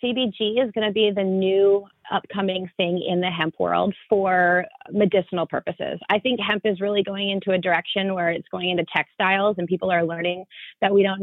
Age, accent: 30-49, American